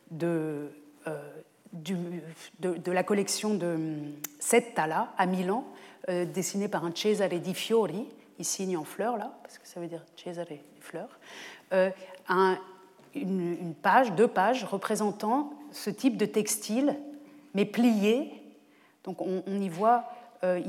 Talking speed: 135 wpm